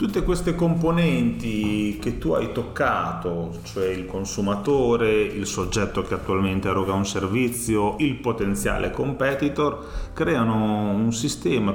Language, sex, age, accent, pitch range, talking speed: Italian, male, 30-49, native, 90-115 Hz, 115 wpm